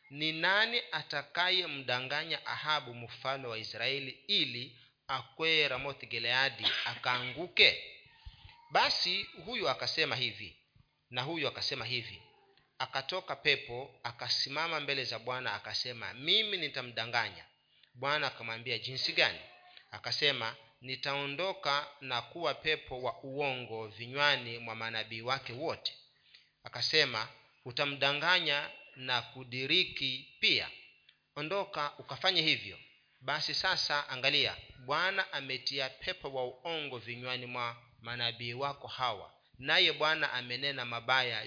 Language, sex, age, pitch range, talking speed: Swahili, male, 40-59, 120-155 Hz, 100 wpm